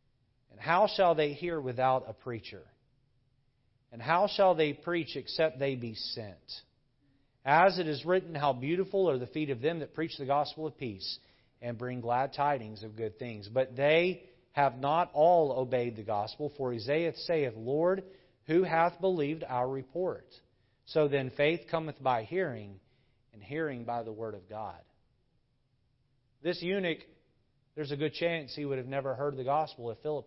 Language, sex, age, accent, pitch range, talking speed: English, male, 40-59, American, 125-165 Hz, 170 wpm